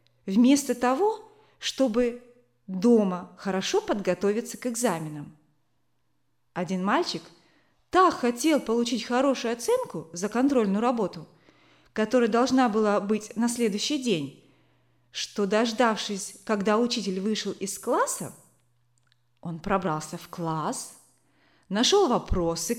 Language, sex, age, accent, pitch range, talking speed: Russian, female, 30-49, native, 165-265 Hz, 100 wpm